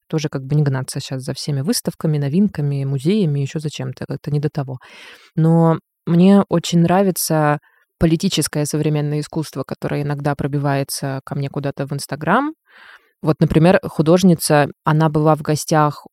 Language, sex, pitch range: Russian, female, 145-170 Hz